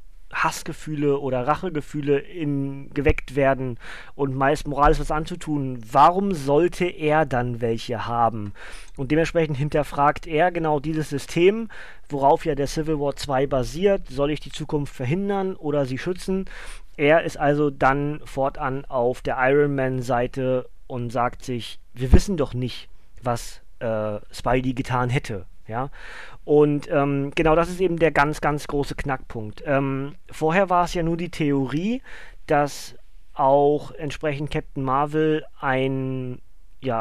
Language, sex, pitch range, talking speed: German, male, 135-165 Hz, 140 wpm